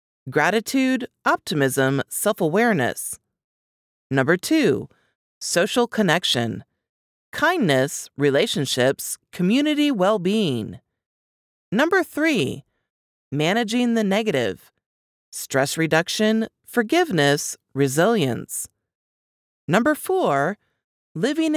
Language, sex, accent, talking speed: English, female, American, 65 wpm